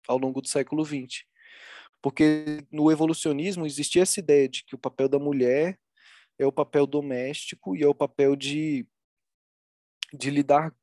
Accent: Brazilian